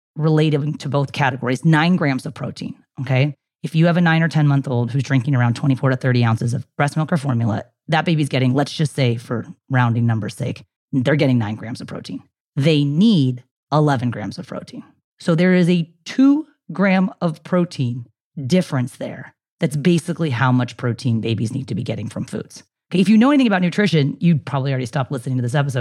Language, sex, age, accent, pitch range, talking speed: English, female, 30-49, American, 130-170 Hz, 205 wpm